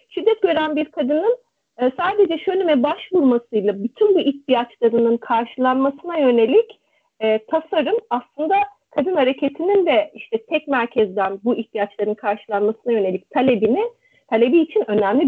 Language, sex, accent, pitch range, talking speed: Turkish, female, native, 245-345 Hz, 115 wpm